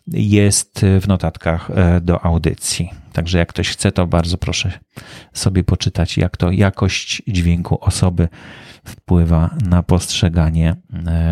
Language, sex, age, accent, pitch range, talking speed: Polish, male, 40-59, native, 95-120 Hz, 115 wpm